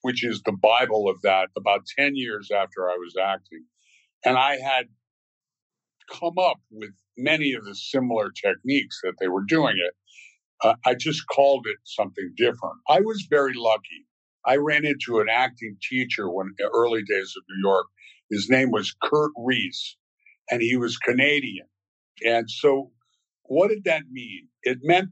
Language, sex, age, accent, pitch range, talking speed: English, male, 50-69, American, 105-145 Hz, 165 wpm